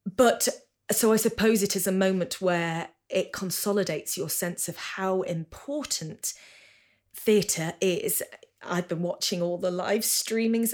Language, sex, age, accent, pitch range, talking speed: English, female, 20-39, British, 180-230 Hz, 140 wpm